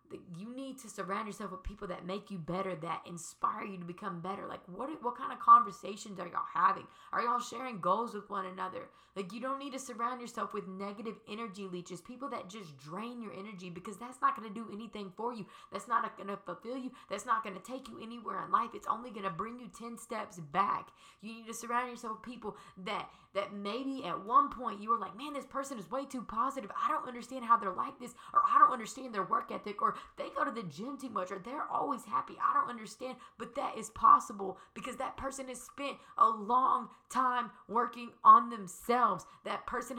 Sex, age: female, 20-39